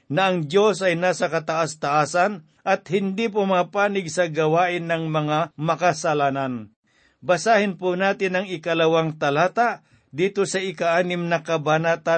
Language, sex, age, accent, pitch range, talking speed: Filipino, male, 50-69, native, 155-190 Hz, 125 wpm